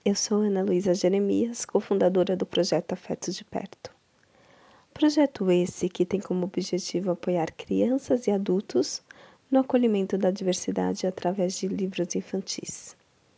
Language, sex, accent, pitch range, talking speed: Portuguese, female, Brazilian, 180-225 Hz, 130 wpm